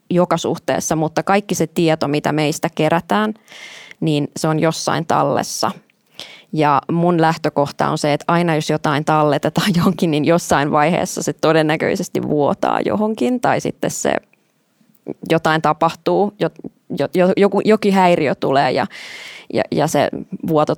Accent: native